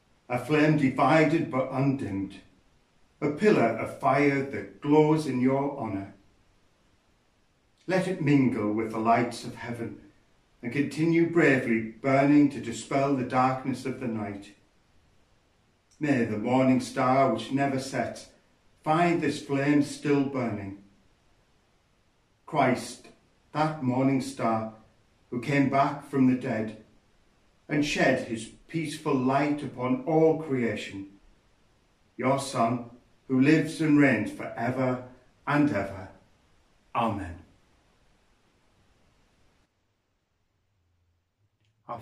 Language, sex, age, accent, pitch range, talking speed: English, male, 50-69, British, 105-140 Hz, 110 wpm